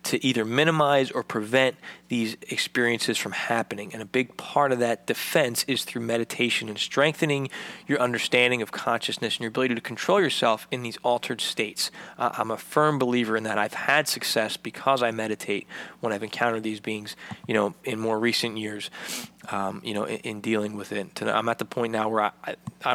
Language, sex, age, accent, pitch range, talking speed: English, male, 20-39, American, 105-120 Hz, 195 wpm